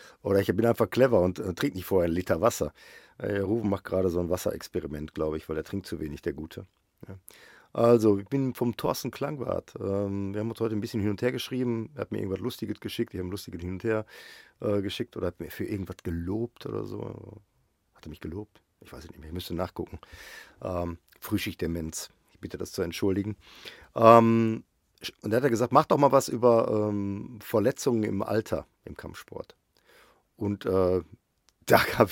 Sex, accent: male, German